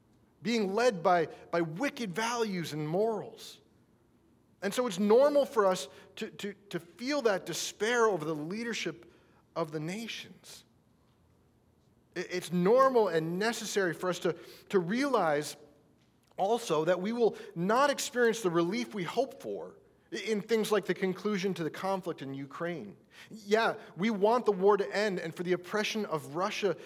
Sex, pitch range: male, 150-215 Hz